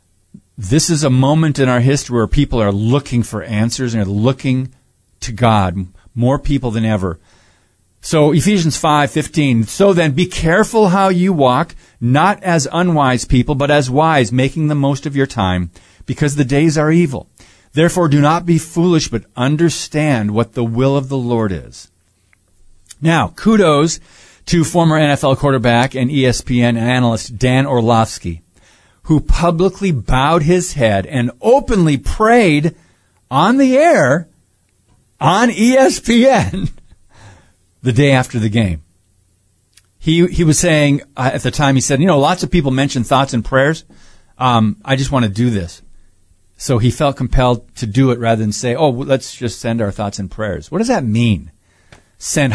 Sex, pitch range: male, 105-150 Hz